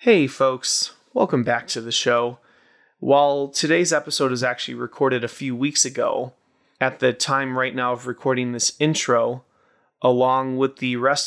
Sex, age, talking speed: male, 30-49, 160 wpm